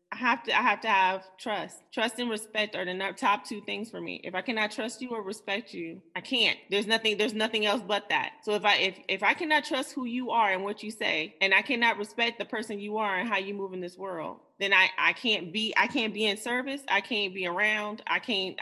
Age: 20-39